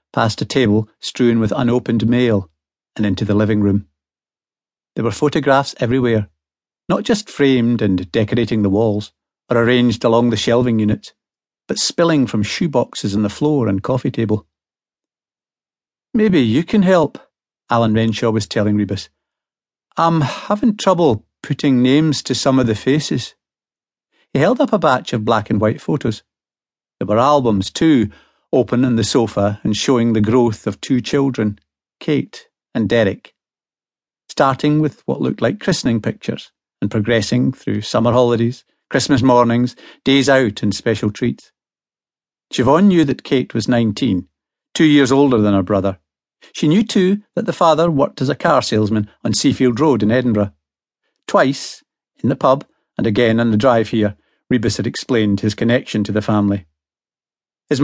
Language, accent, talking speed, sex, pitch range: English, British, 160 wpm, male, 105-135 Hz